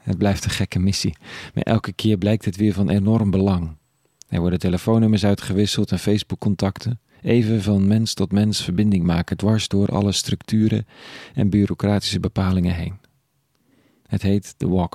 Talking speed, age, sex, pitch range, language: 155 wpm, 40-59, male, 95-115 Hz, Dutch